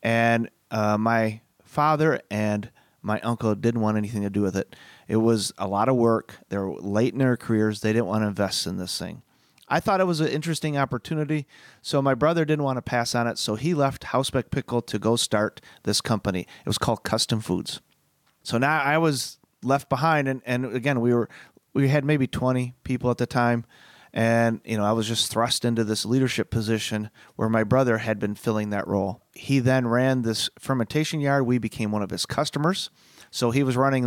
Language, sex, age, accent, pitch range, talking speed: English, male, 30-49, American, 110-130 Hz, 210 wpm